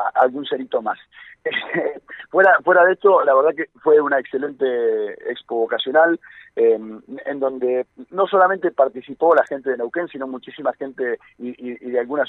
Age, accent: 40-59, Argentinian